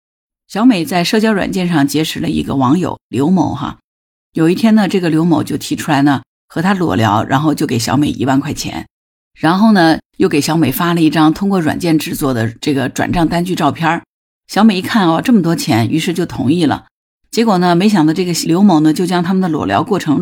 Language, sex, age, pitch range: Chinese, female, 50-69, 145-180 Hz